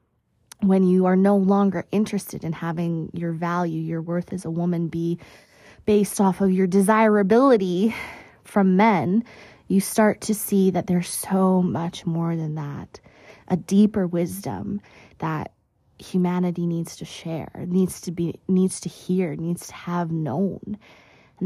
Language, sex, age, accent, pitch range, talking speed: English, female, 20-39, American, 165-205 Hz, 150 wpm